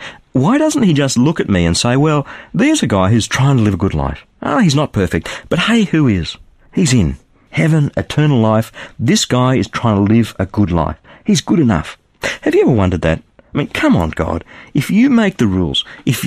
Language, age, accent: English, 50-69, Australian